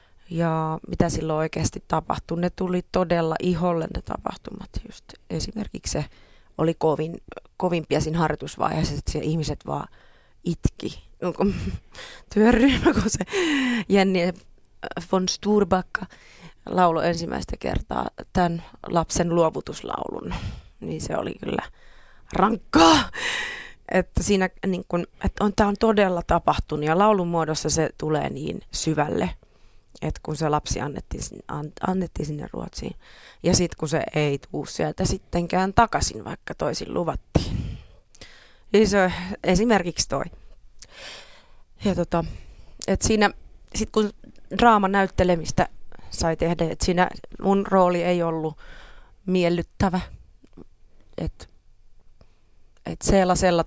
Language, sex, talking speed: Finnish, female, 105 wpm